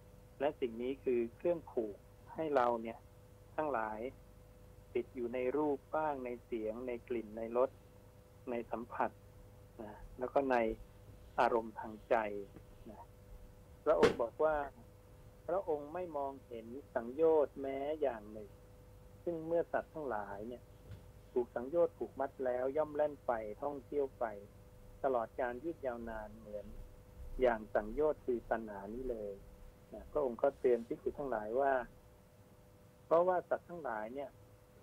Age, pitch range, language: 60-79, 100-130 Hz, Thai